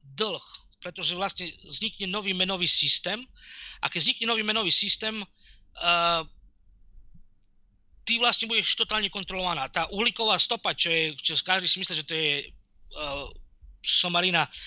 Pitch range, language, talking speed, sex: 150-200 Hz, Slovak, 135 wpm, male